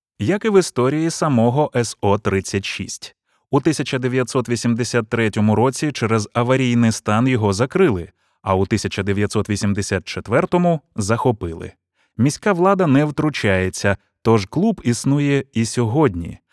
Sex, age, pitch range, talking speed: male, 20-39, 100-135 Hz, 100 wpm